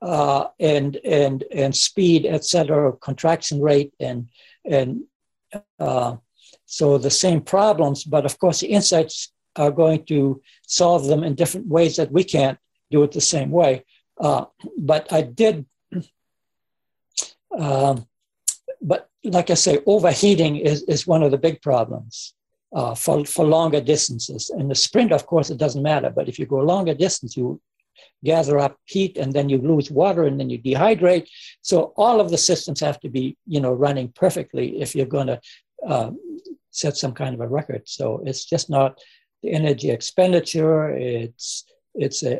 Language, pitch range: English, 135-170 Hz